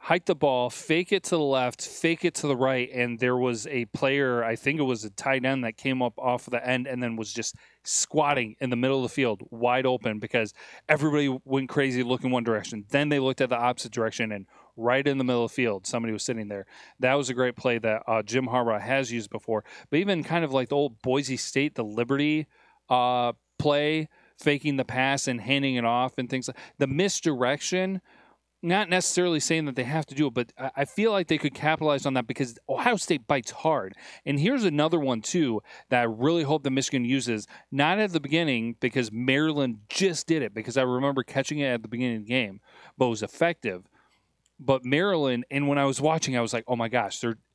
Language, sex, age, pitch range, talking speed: English, male, 30-49, 120-145 Hz, 225 wpm